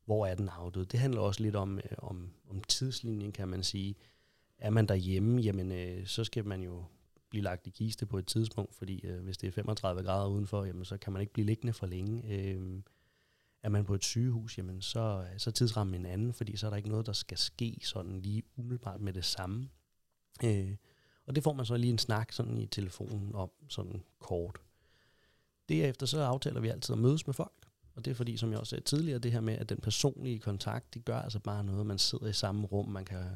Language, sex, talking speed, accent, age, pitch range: Danish, male, 230 wpm, native, 30-49, 95-115 Hz